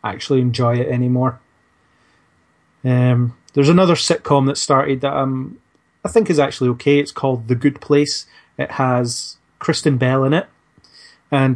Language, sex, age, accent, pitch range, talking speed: English, male, 30-49, British, 120-140 Hz, 150 wpm